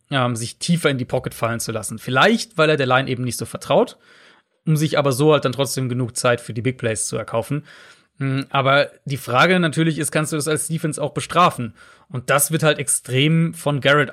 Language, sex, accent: German, male, German